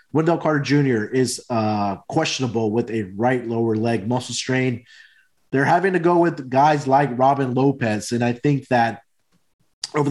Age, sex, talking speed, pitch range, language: 30-49, male, 160 wpm, 115-135 Hz, English